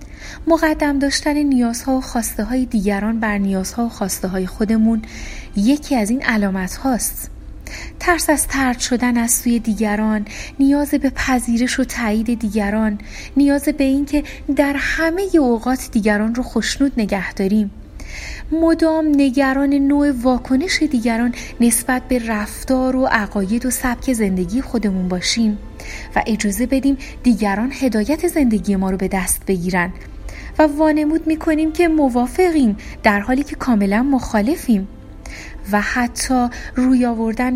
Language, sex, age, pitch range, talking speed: Persian, female, 30-49, 210-275 Hz, 130 wpm